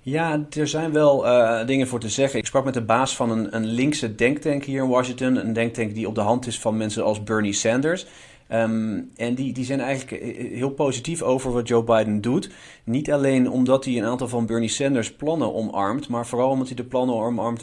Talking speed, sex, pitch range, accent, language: 220 wpm, male, 110-125 Hz, Dutch, Dutch